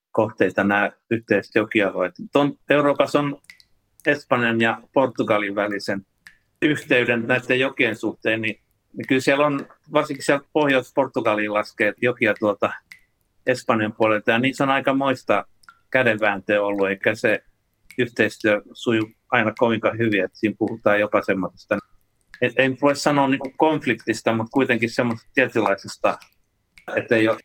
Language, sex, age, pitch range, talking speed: Finnish, male, 60-79, 100-130 Hz, 120 wpm